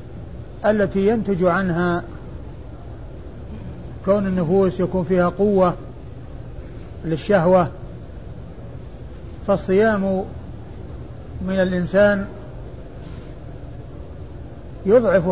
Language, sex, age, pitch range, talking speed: Arabic, male, 50-69, 180-200 Hz, 50 wpm